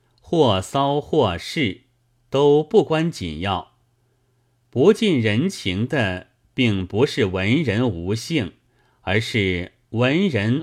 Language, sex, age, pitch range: Chinese, male, 30-49, 100-125 Hz